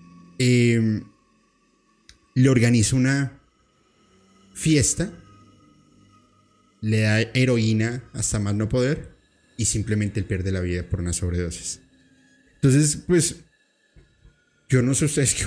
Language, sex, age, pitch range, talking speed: Spanish, male, 30-49, 100-125 Hz, 110 wpm